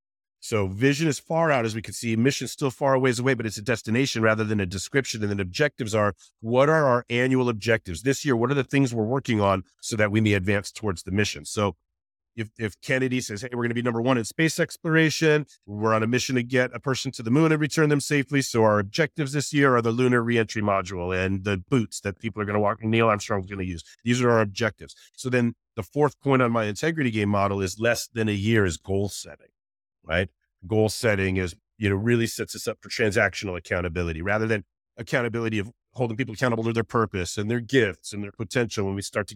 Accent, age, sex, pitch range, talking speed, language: American, 40-59, male, 100-125 Hz, 240 wpm, English